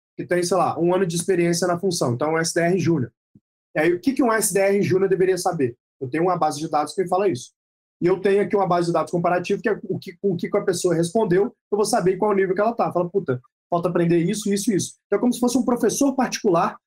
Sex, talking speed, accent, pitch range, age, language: male, 265 wpm, Brazilian, 160-200 Hz, 20-39, Portuguese